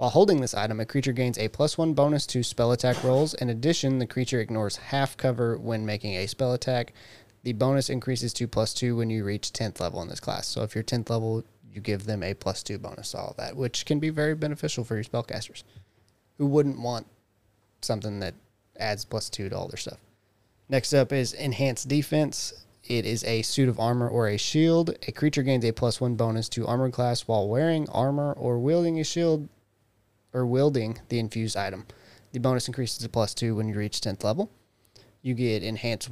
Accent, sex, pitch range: American, male, 110-135 Hz